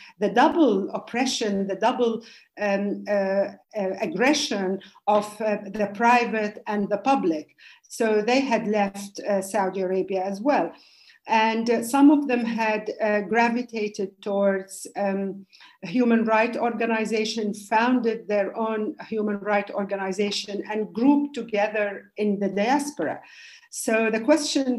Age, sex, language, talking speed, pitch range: 50-69, female, English, 130 wpm, 205-250 Hz